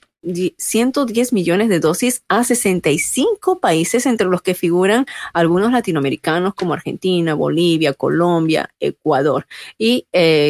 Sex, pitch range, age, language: female, 165-215 Hz, 30-49, Spanish